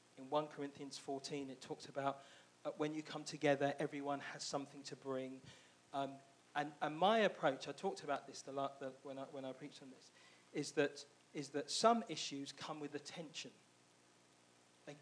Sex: male